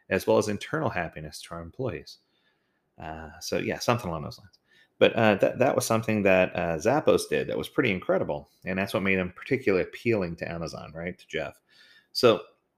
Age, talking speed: 30-49, 195 wpm